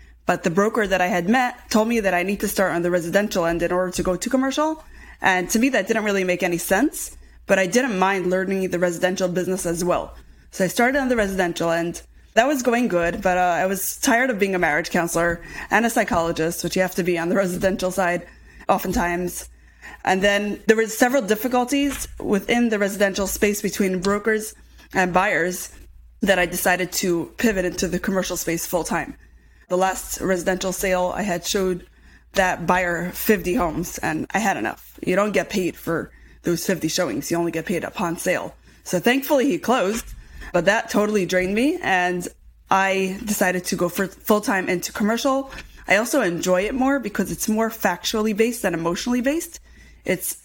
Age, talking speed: 20-39, 195 wpm